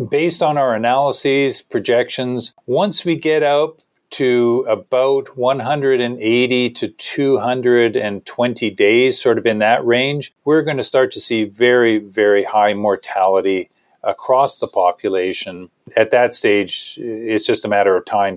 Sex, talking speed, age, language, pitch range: male, 135 wpm, 40-59, English, 105-165 Hz